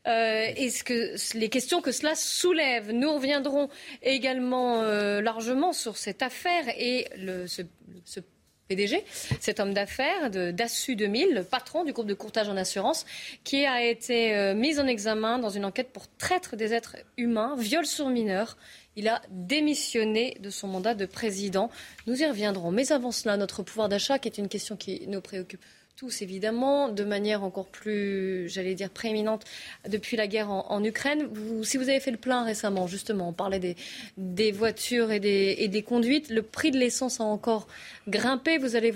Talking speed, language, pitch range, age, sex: 175 wpm, French, 205-260 Hz, 30-49, female